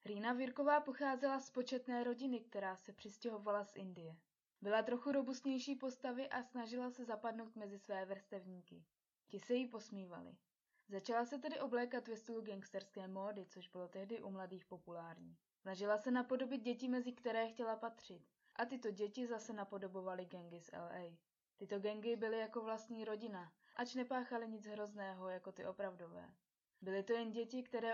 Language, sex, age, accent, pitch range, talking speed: Czech, female, 20-39, native, 195-245 Hz, 160 wpm